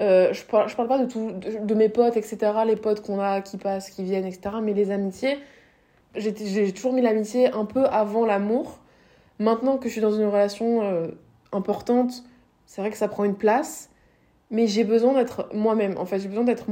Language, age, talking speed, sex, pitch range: French, 20-39, 220 wpm, female, 195-230 Hz